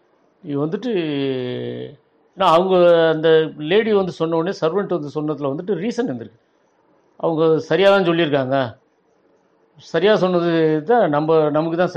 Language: Tamil